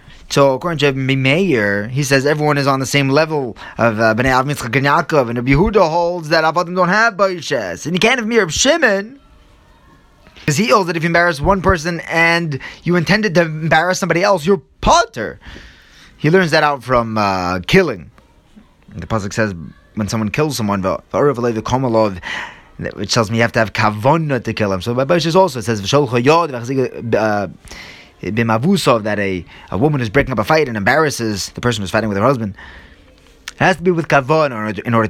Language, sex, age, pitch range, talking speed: English, male, 20-39, 115-180 Hz, 190 wpm